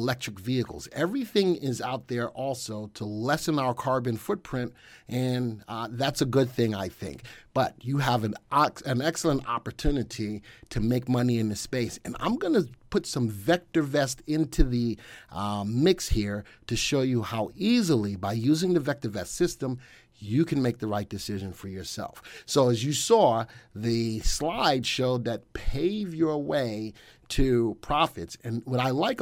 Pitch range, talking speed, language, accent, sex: 110-145 Hz, 165 wpm, English, American, male